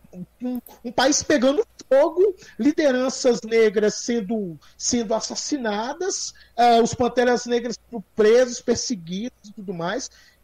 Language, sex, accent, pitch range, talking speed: Portuguese, male, Brazilian, 200-300 Hz, 120 wpm